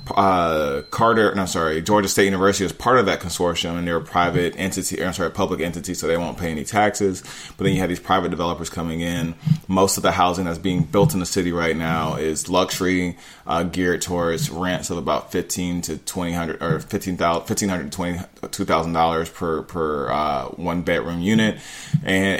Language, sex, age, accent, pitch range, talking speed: English, male, 20-39, American, 85-95 Hz, 215 wpm